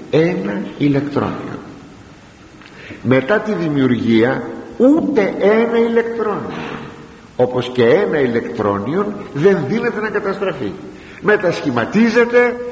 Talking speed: 80 wpm